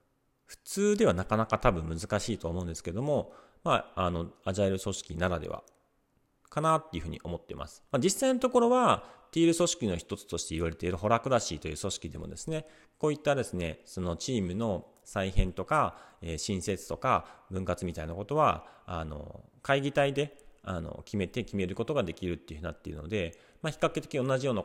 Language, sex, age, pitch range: Japanese, male, 40-59, 85-135 Hz